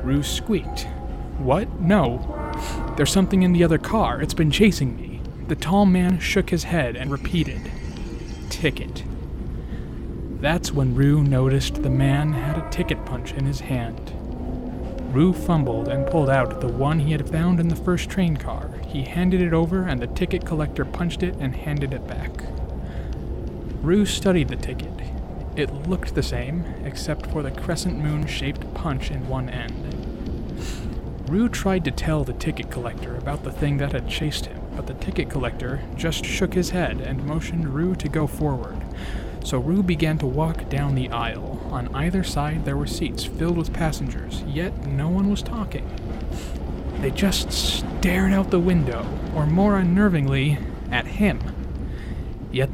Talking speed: 165 wpm